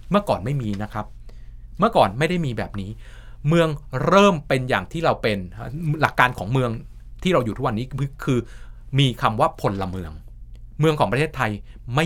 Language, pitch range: Thai, 110-140 Hz